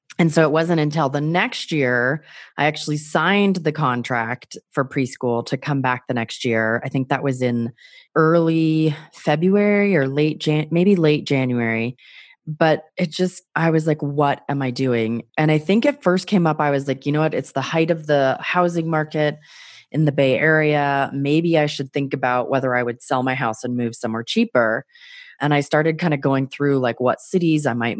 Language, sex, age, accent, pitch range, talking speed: English, female, 30-49, American, 125-160 Hz, 205 wpm